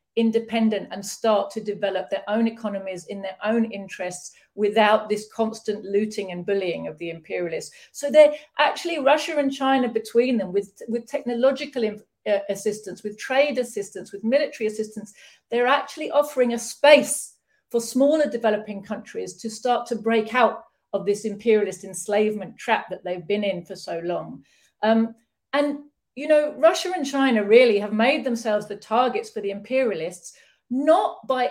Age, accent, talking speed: 40-59, British, 160 wpm